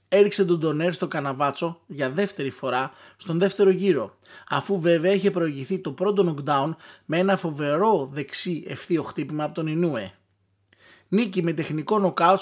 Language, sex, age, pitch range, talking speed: Greek, male, 20-39, 150-190 Hz, 150 wpm